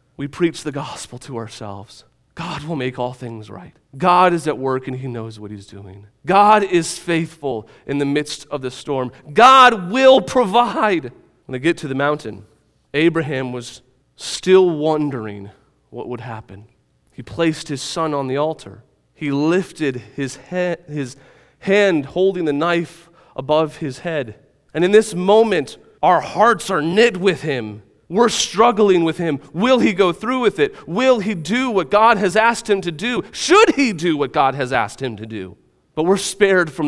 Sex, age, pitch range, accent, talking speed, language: male, 30-49, 125-175 Hz, American, 180 wpm, English